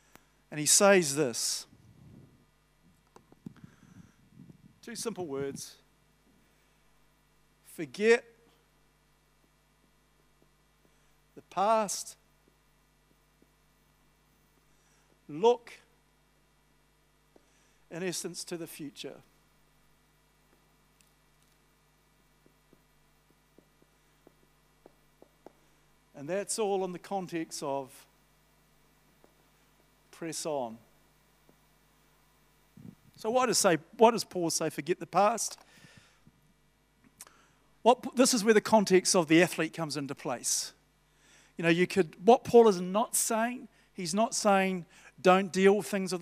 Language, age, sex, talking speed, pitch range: English, 60-79, male, 85 wpm, 150-200 Hz